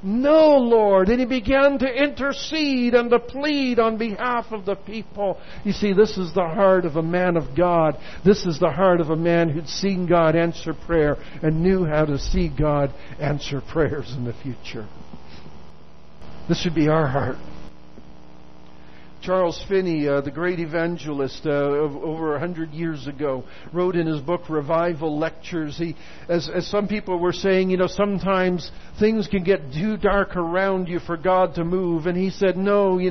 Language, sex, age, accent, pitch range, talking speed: English, male, 60-79, American, 160-225 Hz, 180 wpm